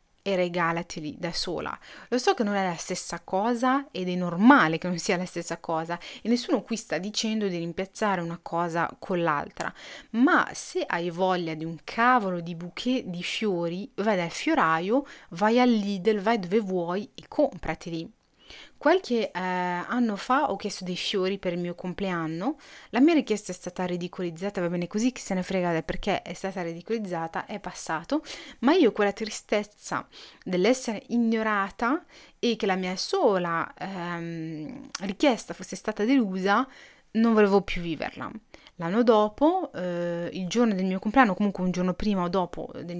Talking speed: 165 wpm